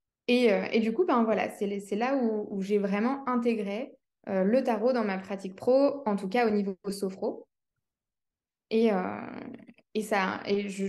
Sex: female